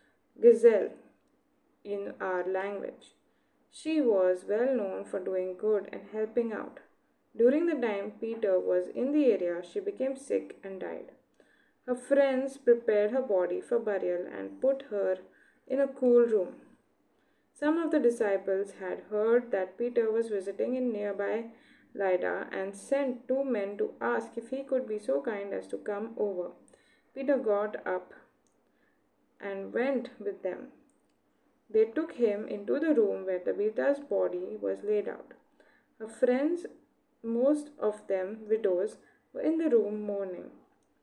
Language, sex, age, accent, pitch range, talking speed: English, female, 20-39, Indian, 200-275 Hz, 145 wpm